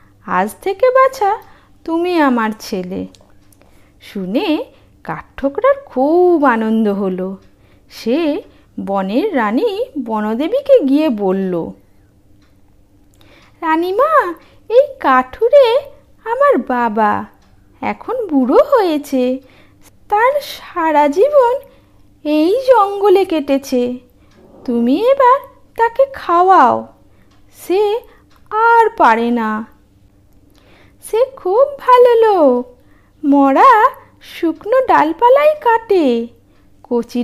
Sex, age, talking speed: female, 50-69, 75 wpm